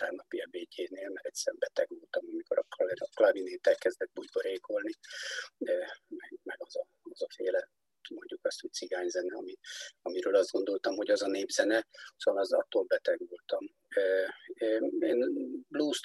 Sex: male